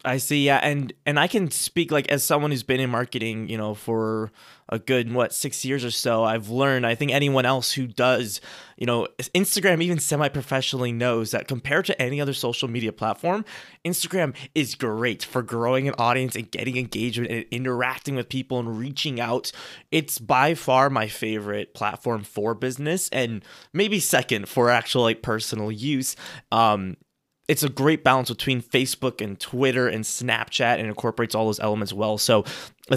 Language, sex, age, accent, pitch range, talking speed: English, male, 20-39, American, 115-140 Hz, 180 wpm